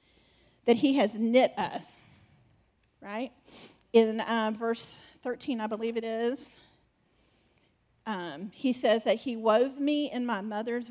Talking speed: 130 wpm